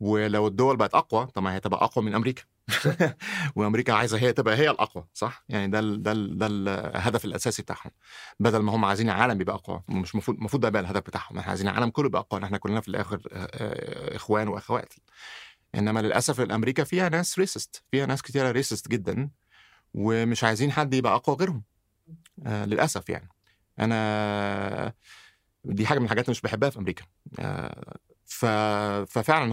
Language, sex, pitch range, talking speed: Arabic, male, 100-120 Hz, 165 wpm